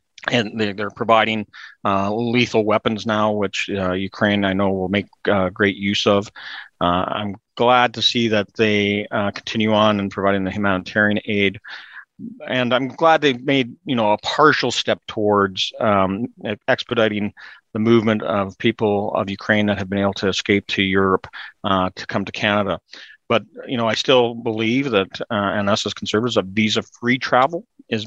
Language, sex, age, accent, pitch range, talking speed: English, male, 40-59, American, 100-115 Hz, 175 wpm